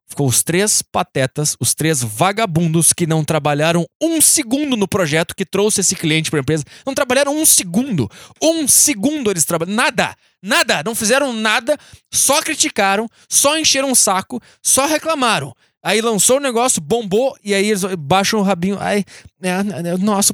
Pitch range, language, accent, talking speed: 165-240 Hz, Spanish, Brazilian, 170 wpm